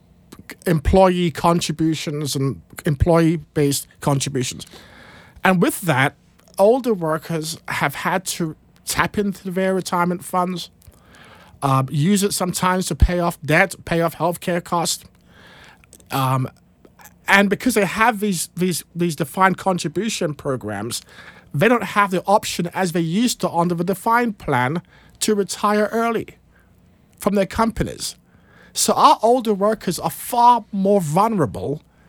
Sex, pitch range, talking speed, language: male, 155-195 Hz, 130 wpm, English